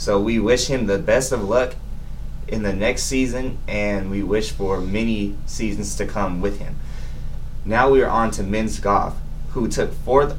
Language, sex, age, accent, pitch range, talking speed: English, male, 20-39, American, 105-130 Hz, 185 wpm